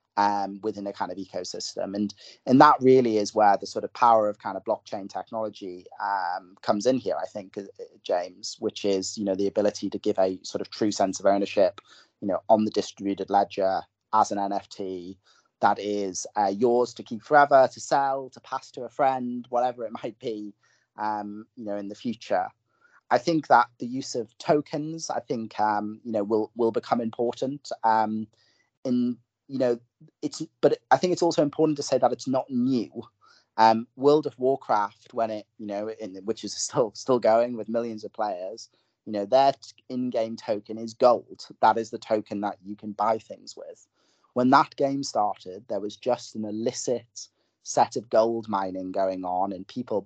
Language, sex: English, male